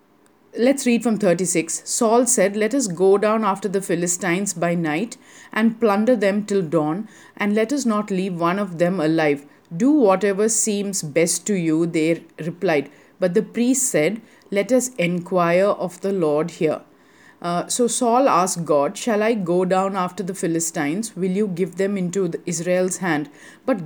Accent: Indian